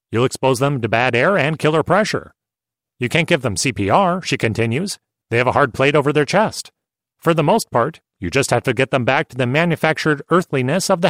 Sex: male